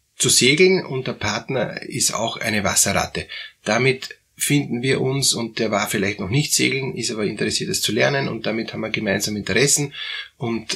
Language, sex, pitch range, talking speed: German, male, 105-150 Hz, 185 wpm